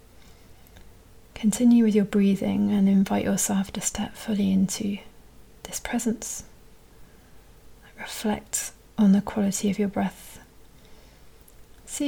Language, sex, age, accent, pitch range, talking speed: English, female, 40-59, British, 195-215 Hz, 105 wpm